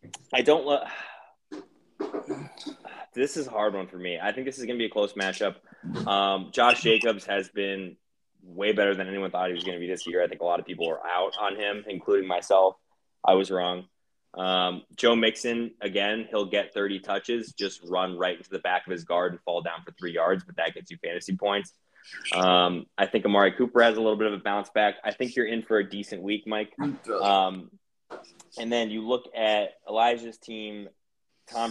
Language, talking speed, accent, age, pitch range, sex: English, 210 wpm, American, 20-39, 95-120 Hz, male